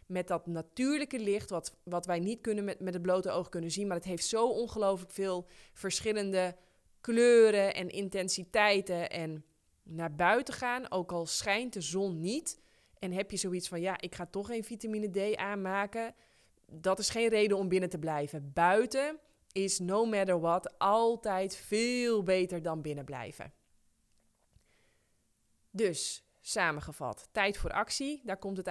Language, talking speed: Dutch, 155 wpm